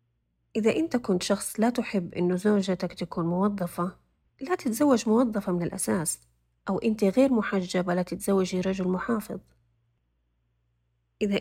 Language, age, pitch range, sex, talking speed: Arabic, 30-49, 175-220 Hz, female, 125 wpm